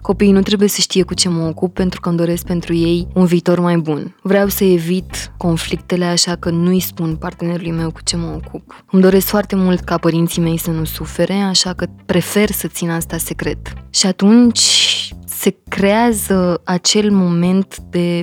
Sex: female